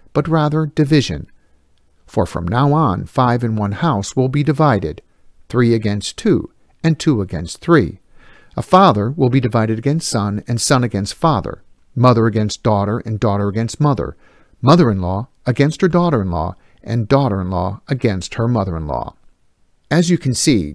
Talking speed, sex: 155 wpm, male